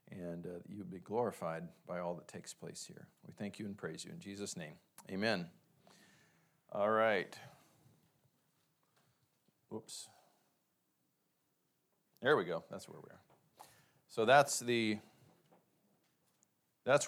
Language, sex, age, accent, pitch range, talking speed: English, male, 40-59, American, 105-130 Hz, 125 wpm